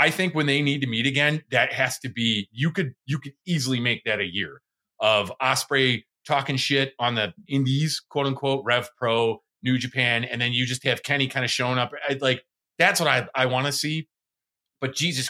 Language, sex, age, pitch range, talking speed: English, male, 30-49, 120-150 Hz, 215 wpm